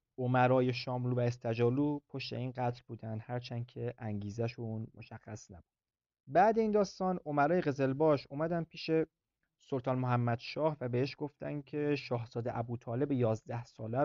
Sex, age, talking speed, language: male, 30-49, 135 wpm, Persian